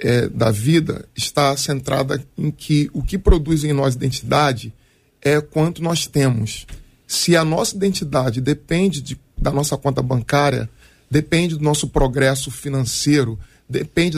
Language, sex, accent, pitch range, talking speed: Portuguese, male, Brazilian, 135-195 Hz, 130 wpm